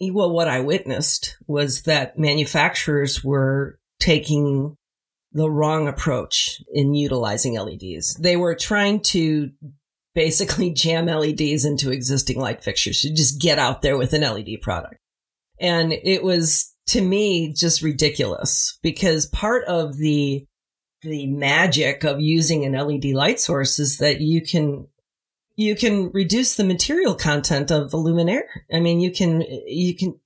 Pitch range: 145-180 Hz